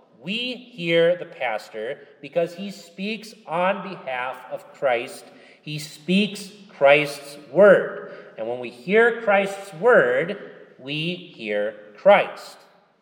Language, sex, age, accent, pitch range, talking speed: English, male, 40-59, American, 140-190 Hz, 110 wpm